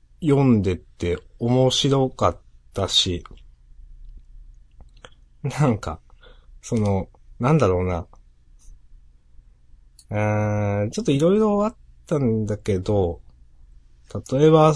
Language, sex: Japanese, male